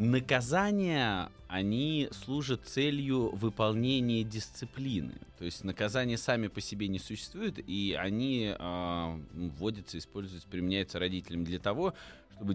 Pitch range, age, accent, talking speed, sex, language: 95-120 Hz, 20-39, native, 115 wpm, male, Russian